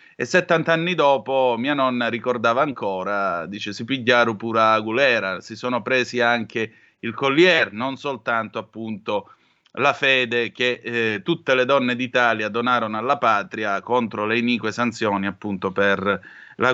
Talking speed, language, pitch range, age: 145 wpm, Italian, 110-145 Hz, 30-49